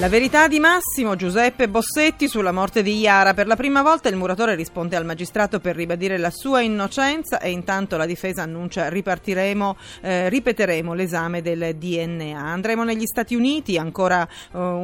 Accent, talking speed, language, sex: native, 165 wpm, Italian, female